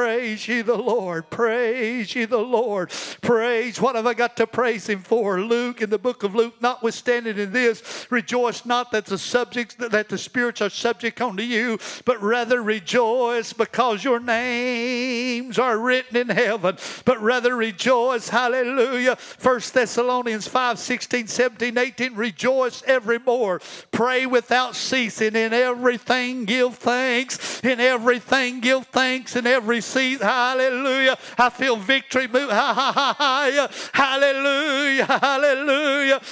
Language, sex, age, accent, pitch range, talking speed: English, male, 50-69, American, 240-275 Hz, 135 wpm